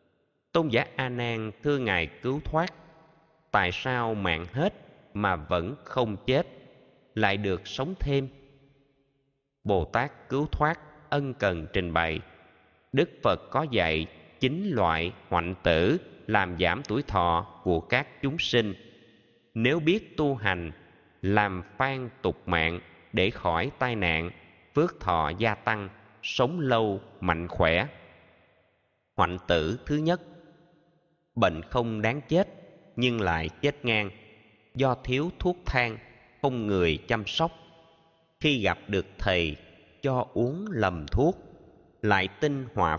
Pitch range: 95-135 Hz